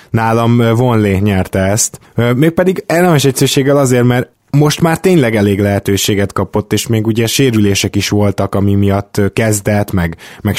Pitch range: 100-120 Hz